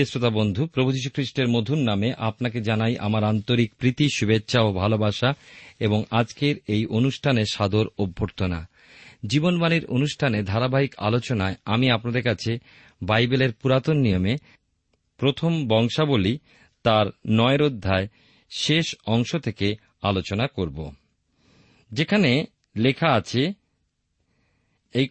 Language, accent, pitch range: Bengali, native, 105-140 Hz